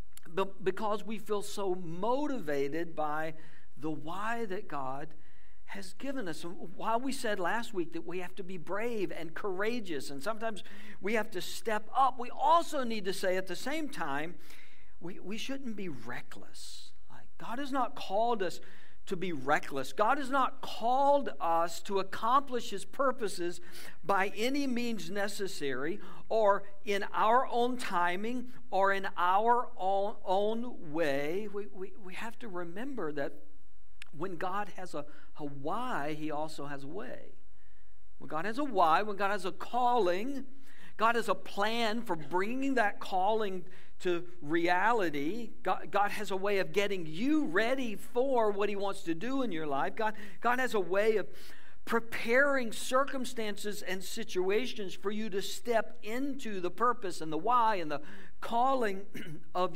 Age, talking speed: 60-79, 160 wpm